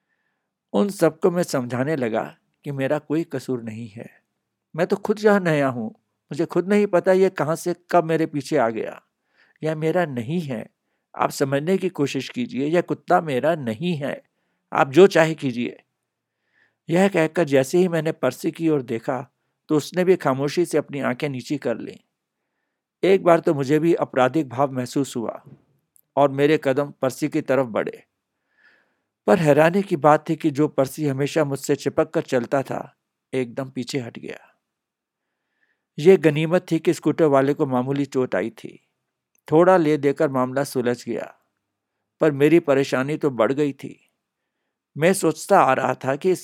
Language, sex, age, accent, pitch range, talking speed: Hindi, male, 60-79, native, 130-165 Hz, 170 wpm